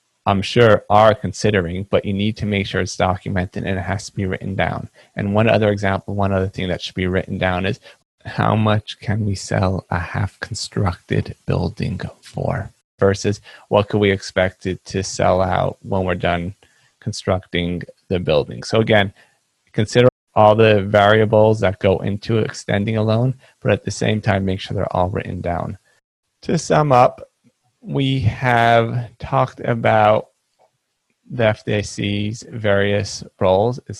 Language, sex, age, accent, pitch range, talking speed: English, male, 30-49, American, 95-110 Hz, 160 wpm